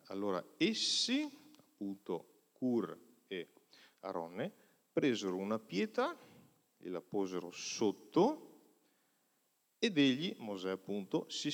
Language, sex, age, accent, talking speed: Italian, male, 40-59, native, 95 wpm